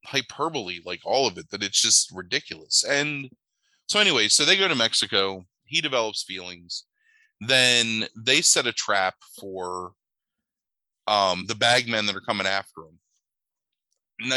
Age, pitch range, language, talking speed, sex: 20-39, 95-125 Hz, English, 150 wpm, male